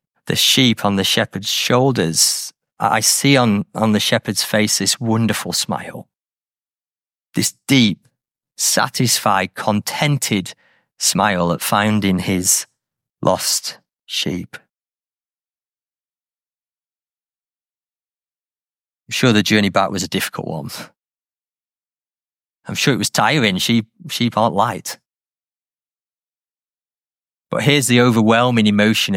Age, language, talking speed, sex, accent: 30-49, English, 100 wpm, male, British